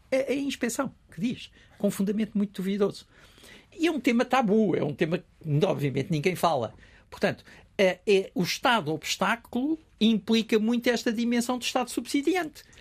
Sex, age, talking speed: male, 60-79, 160 wpm